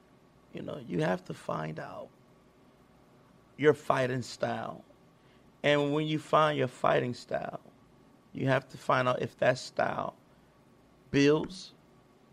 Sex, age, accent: male, 30-49, American